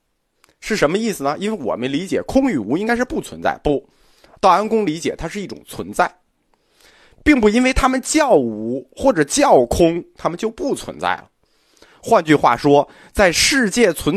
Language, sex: Chinese, male